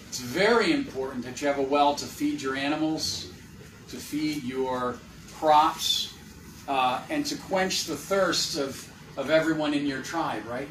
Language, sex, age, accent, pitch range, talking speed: English, male, 40-59, American, 135-195 Hz, 165 wpm